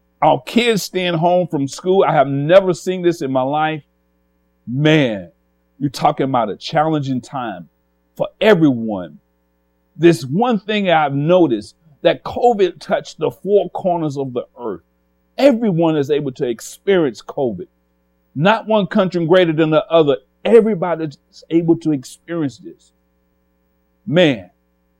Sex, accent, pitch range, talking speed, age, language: male, American, 120-185 Hz, 135 wpm, 50-69, English